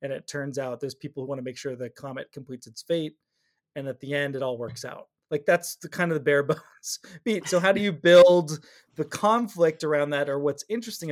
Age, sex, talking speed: 20-39, male, 245 wpm